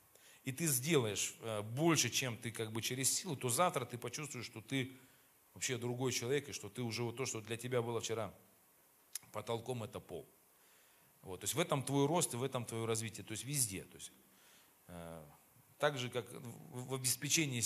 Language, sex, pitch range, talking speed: Russian, male, 105-135 Hz, 195 wpm